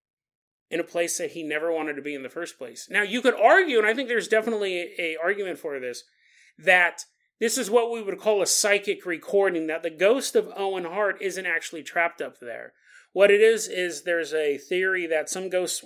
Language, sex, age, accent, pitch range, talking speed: English, male, 30-49, American, 155-205 Hz, 220 wpm